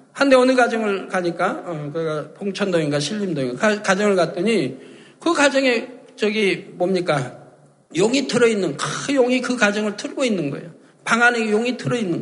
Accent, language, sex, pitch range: native, Korean, male, 185-265 Hz